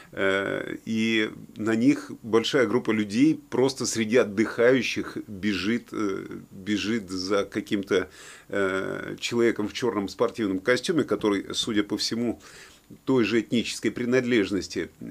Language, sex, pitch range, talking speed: Russian, male, 105-130 Hz, 105 wpm